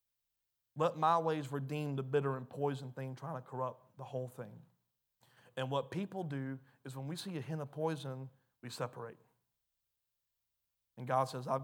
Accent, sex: American, male